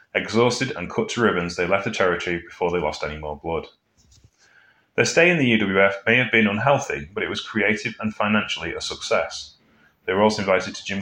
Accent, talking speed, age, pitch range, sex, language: British, 205 wpm, 30-49, 90-115 Hz, male, English